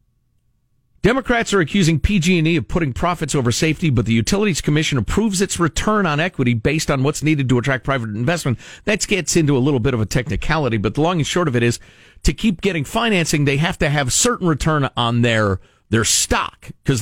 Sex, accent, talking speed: male, American, 205 wpm